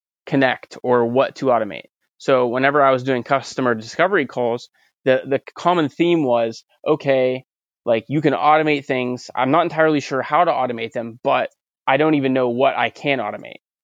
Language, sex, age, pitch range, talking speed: English, male, 20-39, 125-145 Hz, 180 wpm